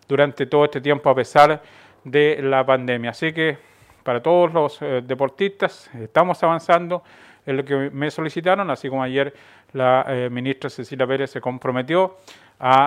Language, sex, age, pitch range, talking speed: Spanish, male, 40-59, 130-165 Hz, 160 wpm